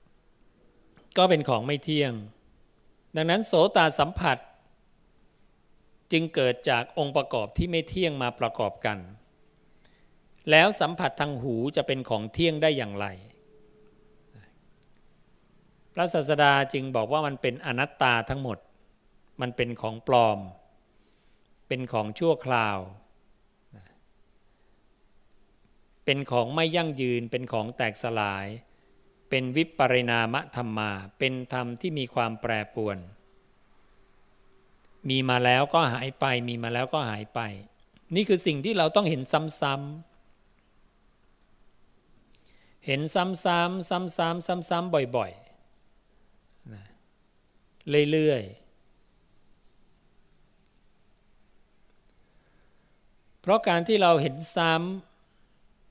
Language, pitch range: English, 115-165 Hz